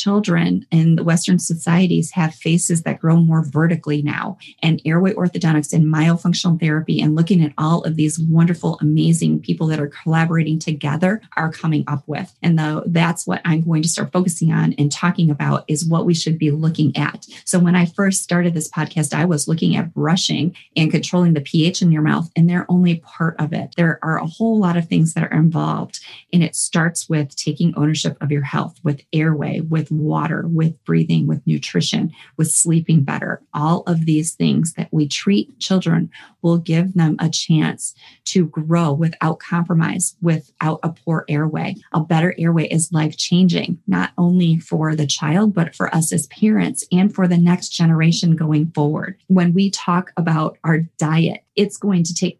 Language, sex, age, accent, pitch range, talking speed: English, female, 30-49, American, 160-180 Hz, 185 wpm